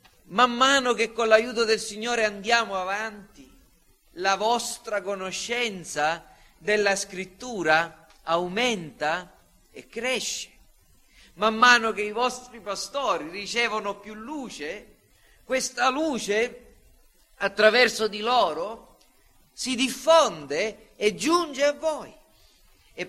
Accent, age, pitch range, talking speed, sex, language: native, 40-59, 195-245 Hz, 100 wpm, male, Italian